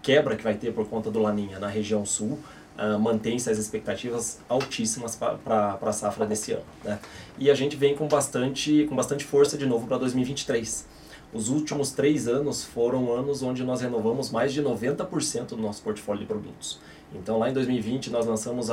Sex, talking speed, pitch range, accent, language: male, 185 wpm, 110-130 Hz, Brazilian, Portuguese